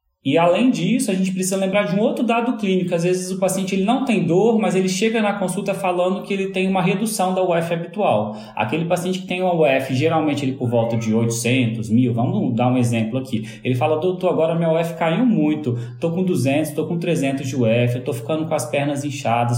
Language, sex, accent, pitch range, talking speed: Portuguese, male, Brazilian, 125-185 Hz, 225 wpm